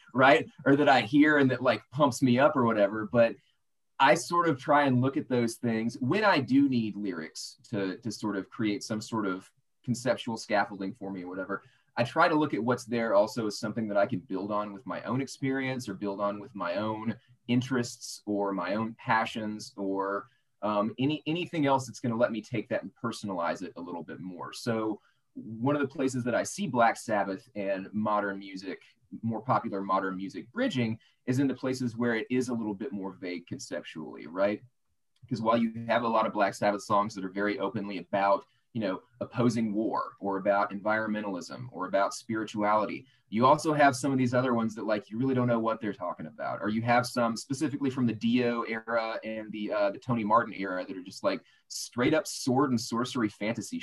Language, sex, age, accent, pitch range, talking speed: English, male, 30-49, American, 105-125 Hz, 215 wpm